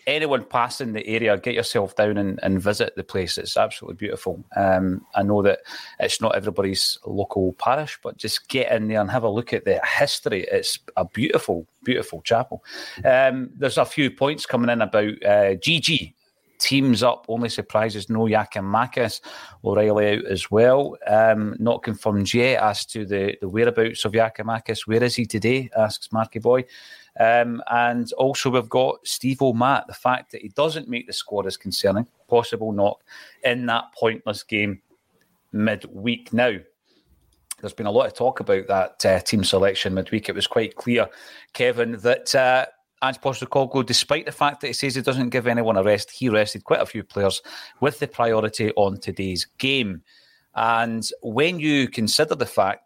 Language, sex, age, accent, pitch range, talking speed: English, male, 30-49, British, 105-125 Hz, 175 wpm